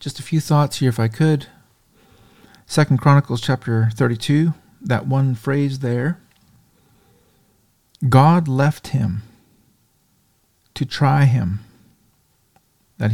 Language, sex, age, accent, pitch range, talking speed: English, male, 40-59, American, 110-135 Hz, 105 wpm